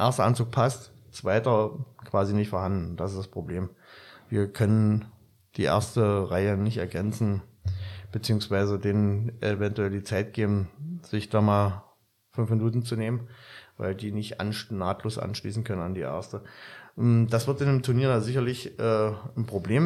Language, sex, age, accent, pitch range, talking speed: German, male, 30-49, German, 105-125 Hz, 150 wpm